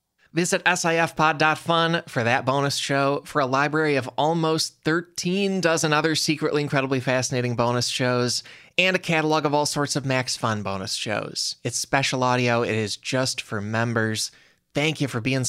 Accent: American